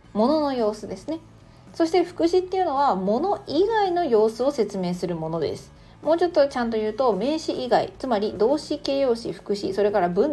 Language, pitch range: Japanese, 190-290 Hz